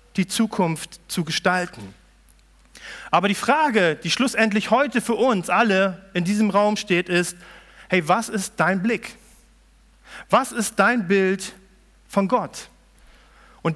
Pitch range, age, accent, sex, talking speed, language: 185-230 Hz, 40-59, German, male, 130 wpm, German